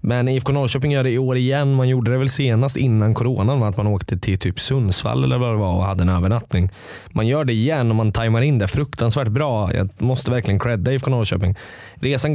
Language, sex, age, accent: Swedish, male, 20-39, native